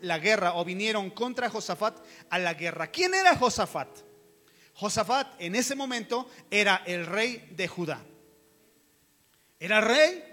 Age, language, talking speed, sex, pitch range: 30-49, Spanish, 135 wpm, male, 180-270 Hz